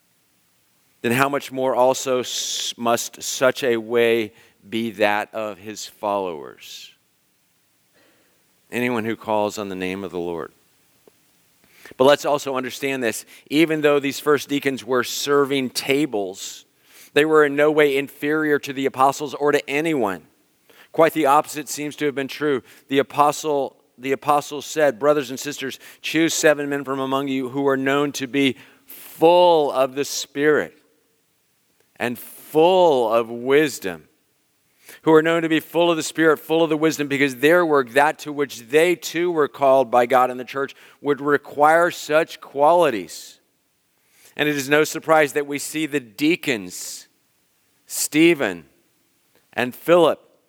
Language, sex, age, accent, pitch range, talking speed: English, male, 40-59, American, 130-150 Hz, 150 wpm